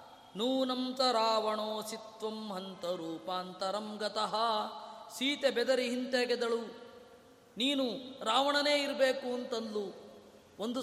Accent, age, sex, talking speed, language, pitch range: native, 20-39, female, 70 wpm, Kannada, 210-250 Hz